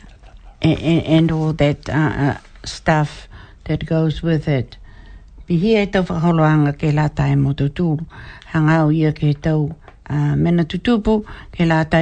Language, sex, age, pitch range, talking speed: English, female, 60-79, 140-170 Hz, 130 wpm